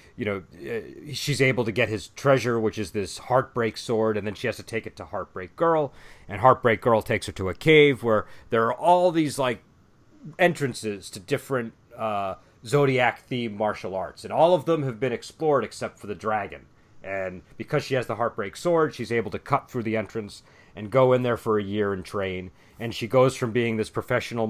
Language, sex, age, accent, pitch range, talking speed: English, male, 40-59, American, 105-130 Hz, 210 wpm